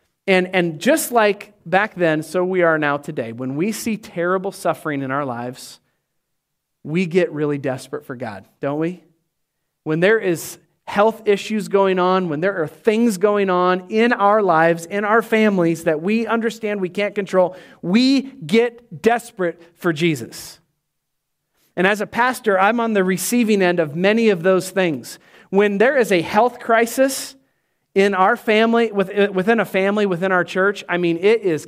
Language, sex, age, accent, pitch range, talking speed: English, male, 40-59, American, 170-235 Hz, 170 wpm